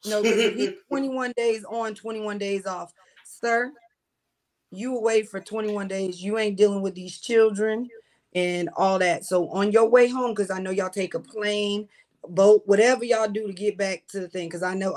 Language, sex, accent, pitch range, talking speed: English, female, American, 195-250 Hz, 195 wpm